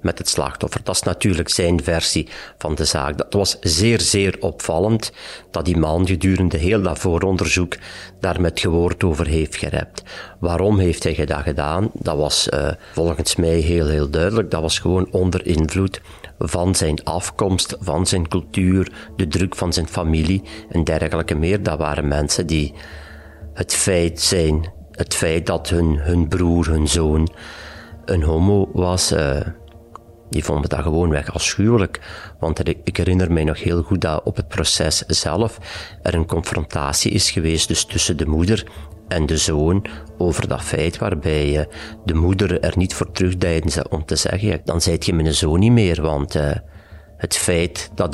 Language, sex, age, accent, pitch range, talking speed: Dutch, male, 40-59, Belgian, 80-95 Hz, 165 wpm